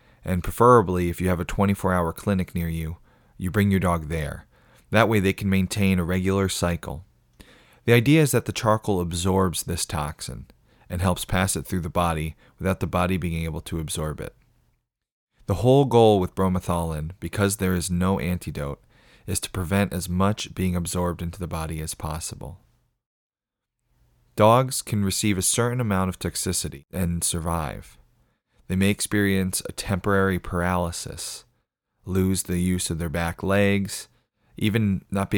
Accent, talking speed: American, 165 wpm